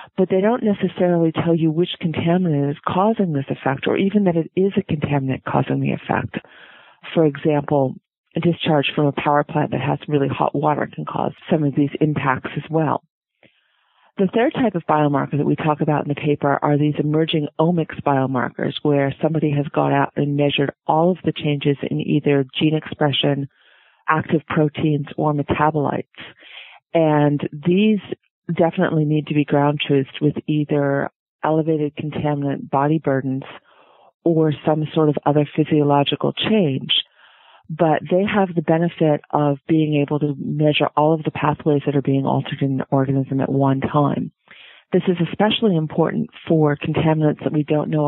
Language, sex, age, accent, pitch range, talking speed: English, female, 40-59, American, 145-165 Hz, 165 wpm